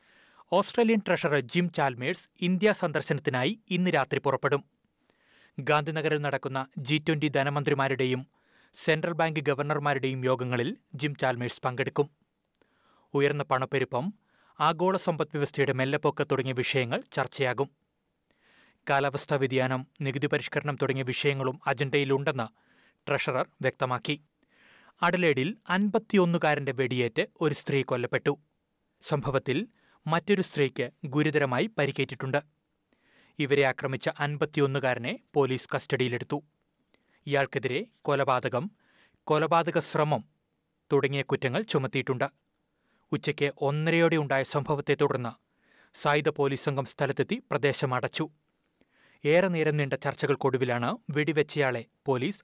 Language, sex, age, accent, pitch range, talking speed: Malayalam, male, 30-49, native, 135-155 Hz, 85 wpm